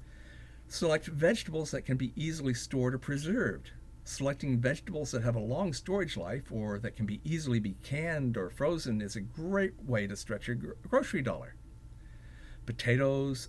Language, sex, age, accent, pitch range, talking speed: English, male, 50-69, American, 110-155 Hz, 160 wpm